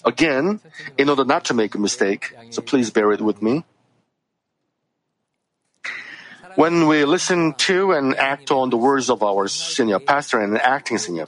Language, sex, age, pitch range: Korean, male, 50-69, 110-150 Hz